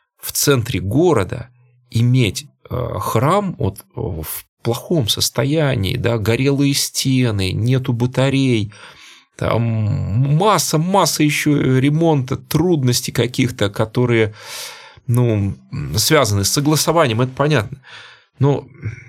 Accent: native